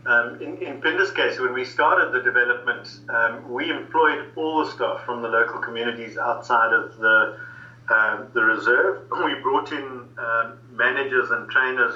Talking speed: 165 wpm